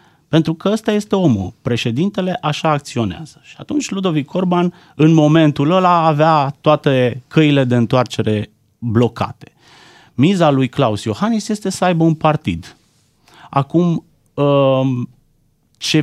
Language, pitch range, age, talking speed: Romanian, 115-165 Hz, 30-49, 120 wpm